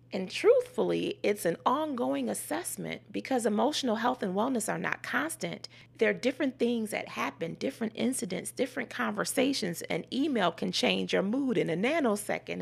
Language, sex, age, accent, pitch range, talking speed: English, female, 30-49, American, 190-260 Hz, 155 wpm